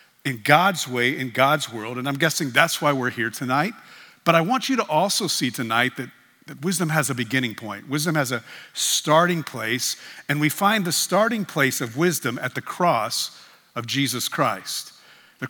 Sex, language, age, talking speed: male, English, 50-69, 190 wpm